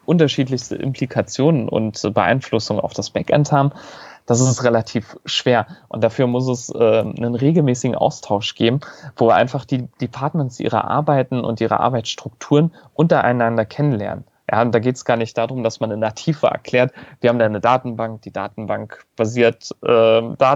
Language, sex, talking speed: German, male, 165 wpm